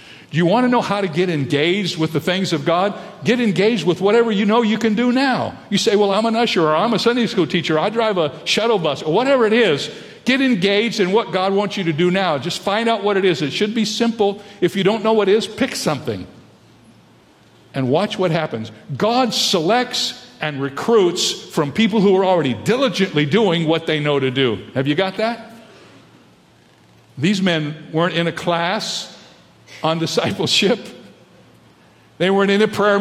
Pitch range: 165-220 Hz